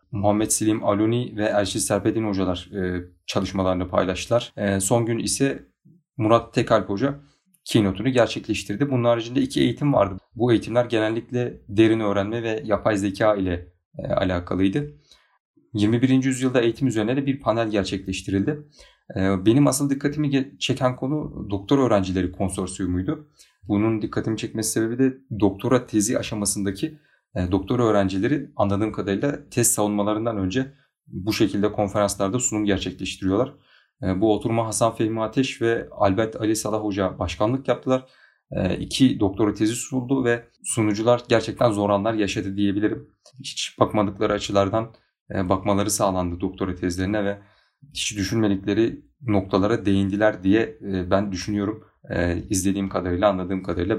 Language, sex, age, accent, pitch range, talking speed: Turkish, male, 40-59, native, 100-120 Hz, 120 wpm